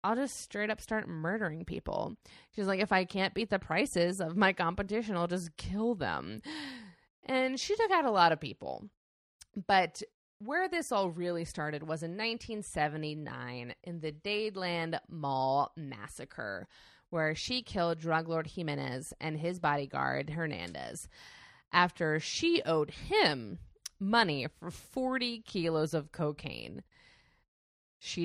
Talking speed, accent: 140 wpm, American